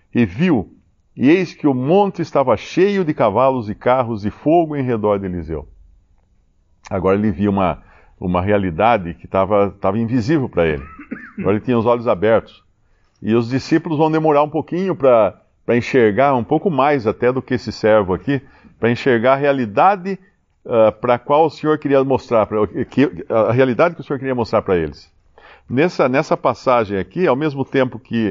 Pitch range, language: 100-140 Hz, Portuguese